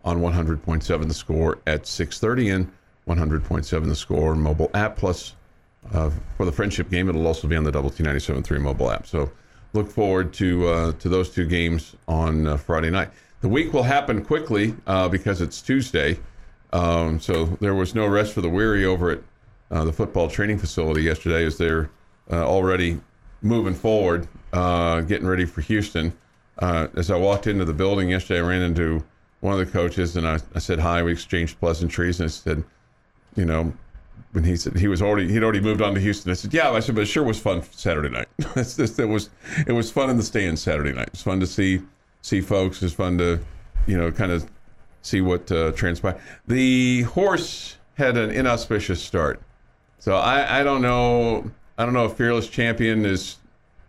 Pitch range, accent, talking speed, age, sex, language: 85-105 Hz, American, 200 wpm, 50-69, male, English